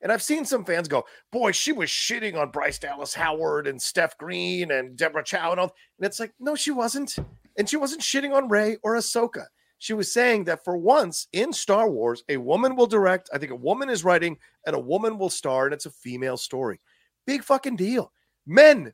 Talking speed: 220 wpm